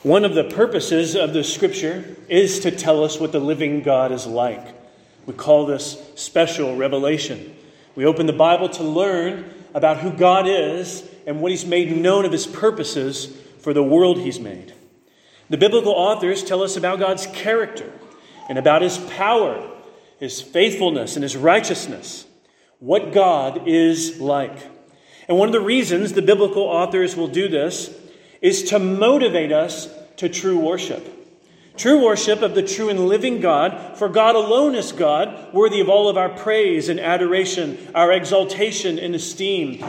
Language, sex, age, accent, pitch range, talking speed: English, male, 40-59, American, 160-210 Hz, 165 wpm